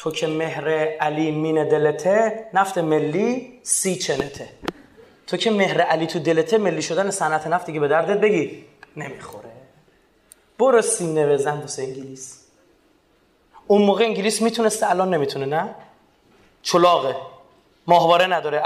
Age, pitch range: 30-49, 170-240 Hz